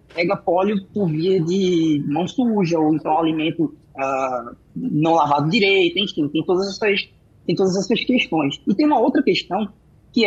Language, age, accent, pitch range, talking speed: Portuguese, 20-39, Brazilian, 165-210 Hz, 165 wpm